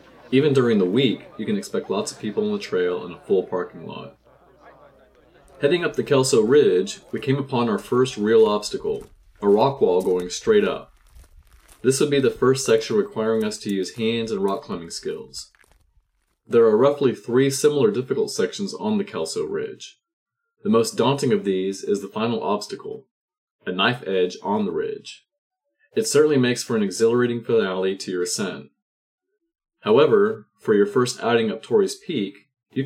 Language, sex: English, male